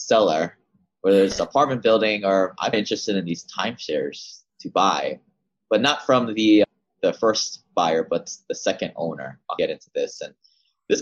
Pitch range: 90-140 Hz